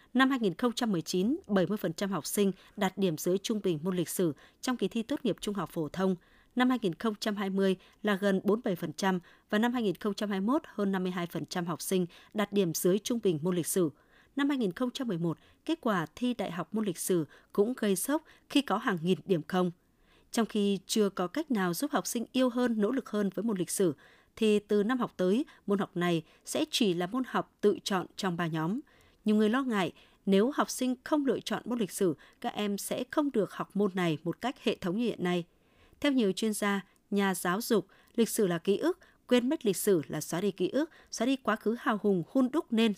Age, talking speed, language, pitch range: 20-39, 215 wpm, Vietnamese, 180-235 Hz